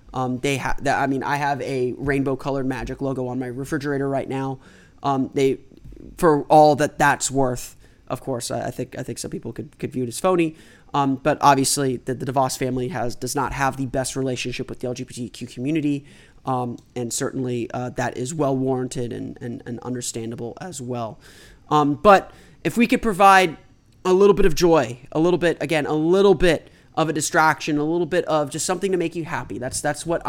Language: English